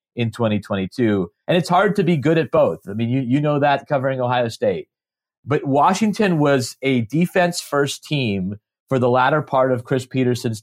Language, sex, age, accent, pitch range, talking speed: English, male, 30-49, American, 115-140 Hz, 185 wpm